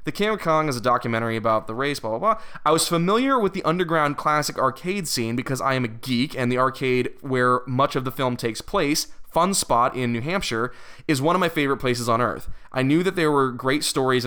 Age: 20-39